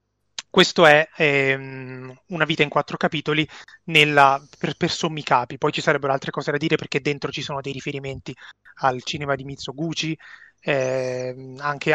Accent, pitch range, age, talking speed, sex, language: native, 135-160 Hz, 30-49, 150 wpm, male, Italian